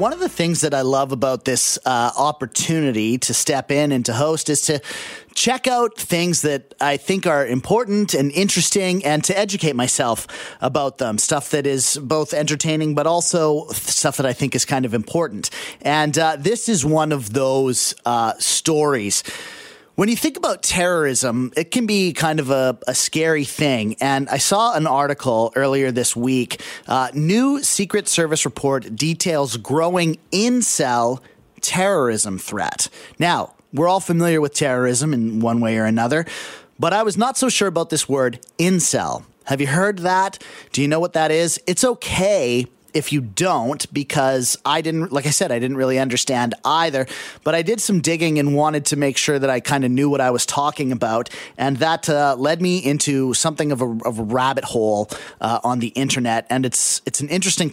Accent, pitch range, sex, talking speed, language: American, 130-170 Hz, male, 185 wpm, English